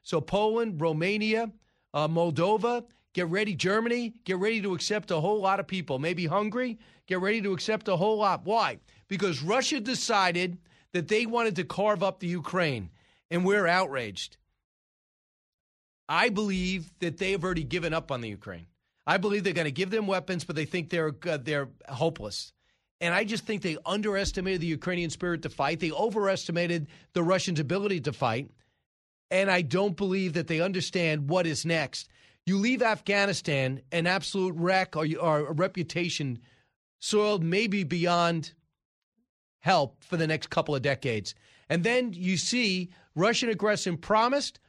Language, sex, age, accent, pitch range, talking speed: English, male, 40-59, American, 160-210 Hz, 160 wpm